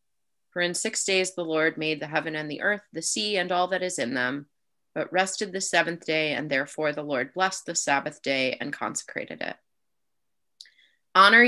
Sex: female